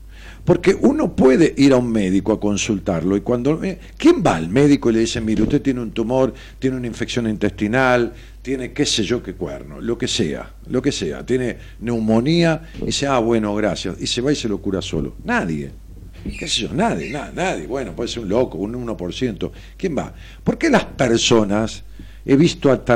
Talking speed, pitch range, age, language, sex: 200 wpm, 95-145 Hz, 50-69, Spanish, male